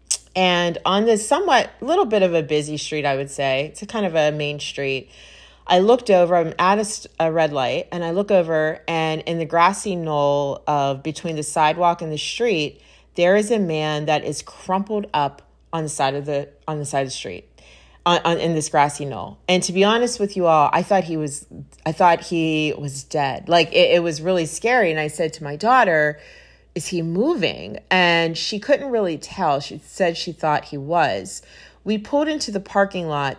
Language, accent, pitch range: English, American, 150-185 Hz